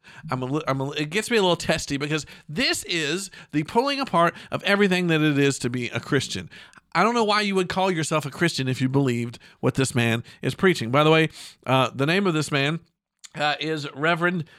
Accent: American